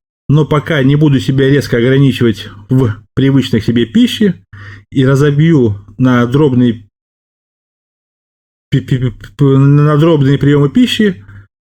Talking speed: 105 wpm